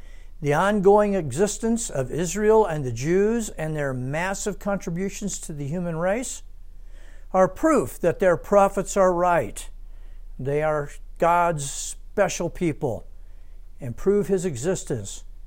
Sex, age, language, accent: male, 60-79, English, American